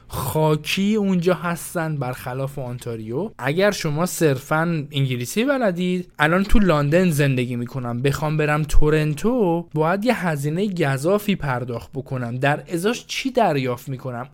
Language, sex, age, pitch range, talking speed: Persian, male, 20-39, 135-185 Hz, 120 wpm